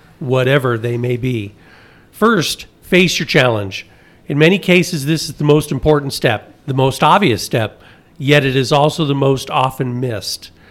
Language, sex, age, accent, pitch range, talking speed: English, male, 40-59, American, 120-155 Hz, 160 wpm